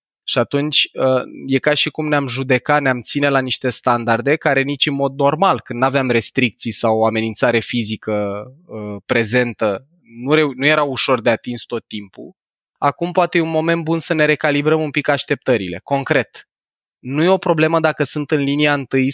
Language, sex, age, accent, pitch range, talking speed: Romanian, male, 20-39, native, 120-145 Hz, 180 wpm